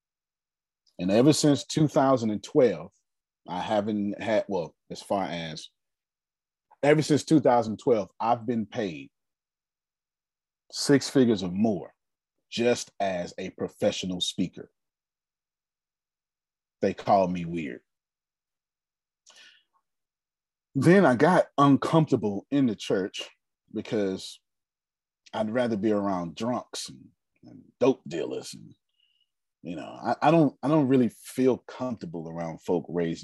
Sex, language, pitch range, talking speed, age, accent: male, English, 90-150 Hz, 105 wpm, 30-49, American